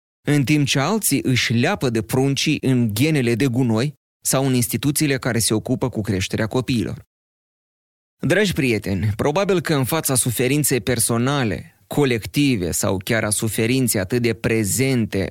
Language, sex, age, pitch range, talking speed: Romanian, male, 30-49, 105-135 Hz, 145 wpm